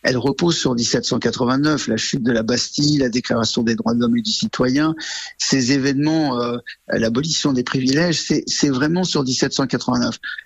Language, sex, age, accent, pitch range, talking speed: French, male, 50-69, French, 130-165 Hz, 165 wpm